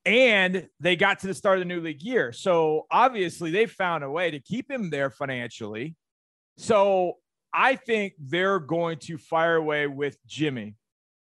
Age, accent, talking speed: 40-59, American, 170 wpm